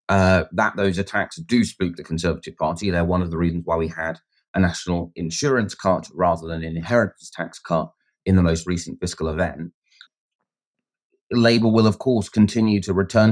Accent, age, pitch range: British, 30-49, 85-100 Hz